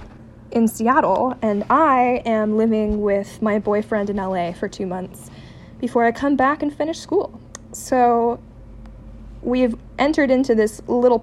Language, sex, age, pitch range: English, female, 20-39, 180-240 Hz